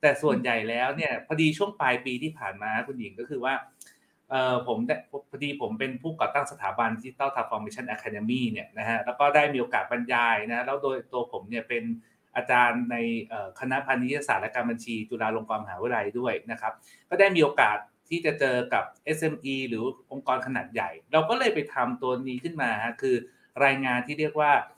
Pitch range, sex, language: 120-155 Hz, male, Thai